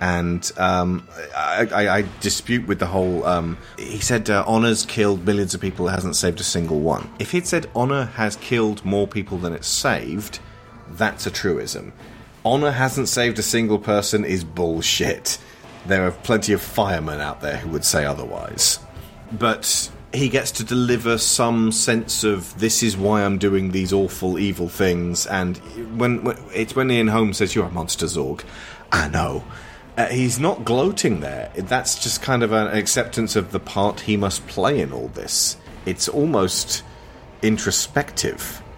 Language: English